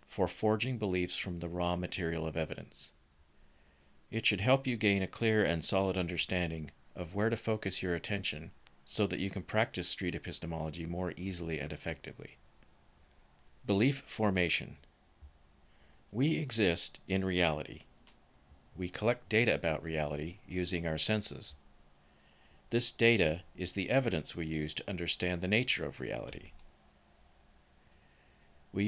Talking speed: 135 wpm